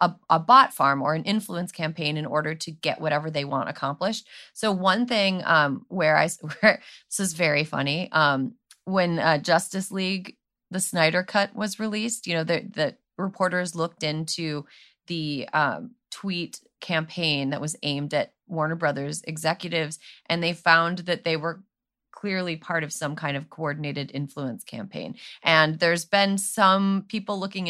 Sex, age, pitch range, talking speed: female, 30-49, 155-190 Hz, 160 wpm